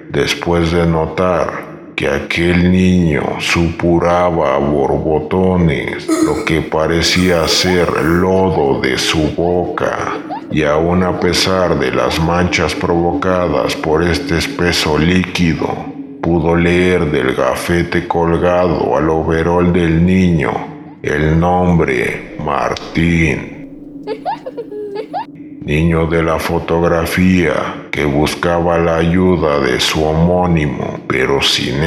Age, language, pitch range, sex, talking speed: 50-69, Spanish, 80-90 Hz, male, 100 wpm